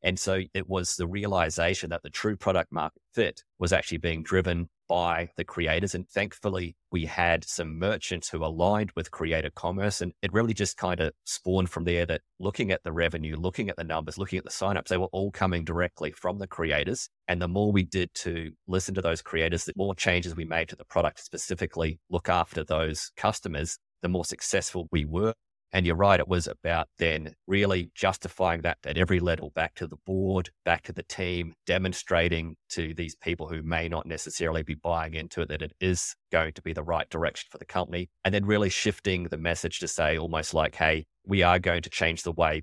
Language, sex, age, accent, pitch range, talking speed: English, male, 30-49, Australian, 80-95 Hz, 215 wpm